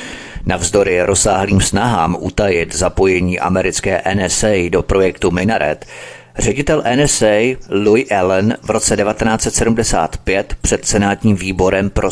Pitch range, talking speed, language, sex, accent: 100-125 Hz, 105 wpm, Czech, male, native